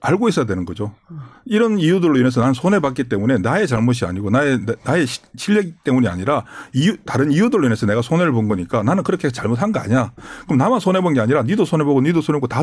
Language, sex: Korean, male